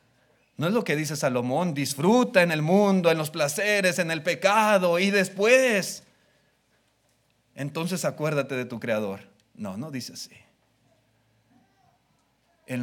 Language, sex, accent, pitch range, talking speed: Spanish, male, Mexican, 125-175 Hz, 130 wpm